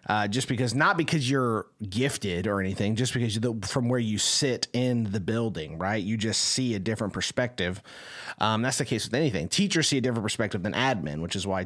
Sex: male